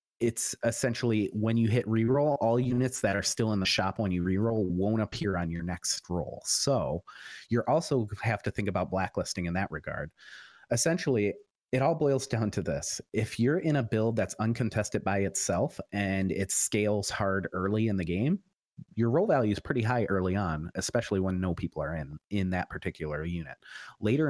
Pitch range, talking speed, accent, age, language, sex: 90-115 Hz, 190 wpm, American, 30-49, English, male